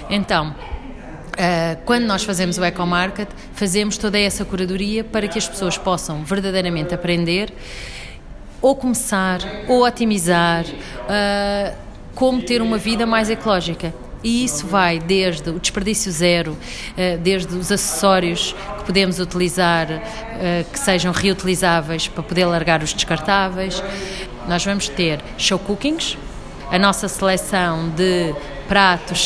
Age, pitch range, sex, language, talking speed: 30-49, 175-205 Hz, female, Portuguese, 120 wpm